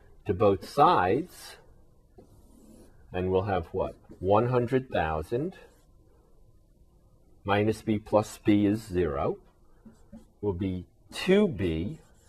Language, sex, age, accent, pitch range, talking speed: English, male, 50-69, American, 90-110 Hz, 85 wpm